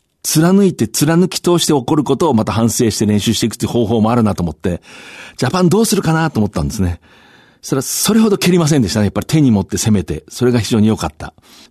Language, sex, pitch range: Japanese, male, 95-150 Hz